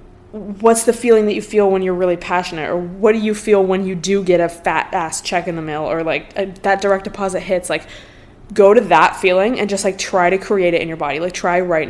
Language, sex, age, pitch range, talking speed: English, female, 20-39, 175-205 Hz, 255 wpm